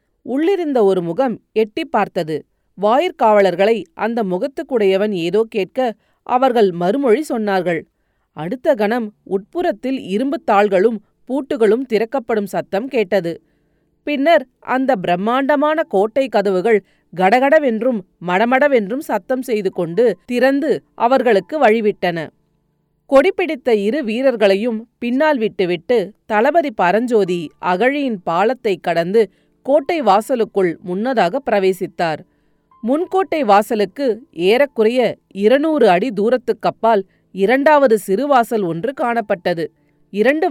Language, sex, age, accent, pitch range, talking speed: Tamil, female, 30-49, native, 190-265 Hz, 90 wpm